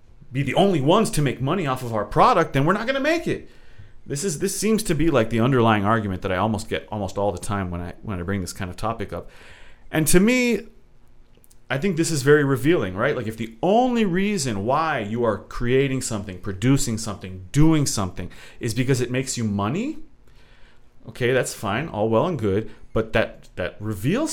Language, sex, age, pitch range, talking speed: English, male, 30-49, 105-170 Hz, 210 wpm